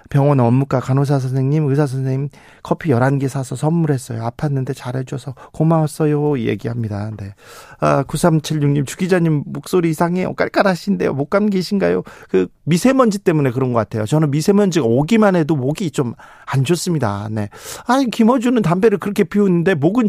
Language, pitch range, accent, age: Korean, 135-180 Hz, native, 40-59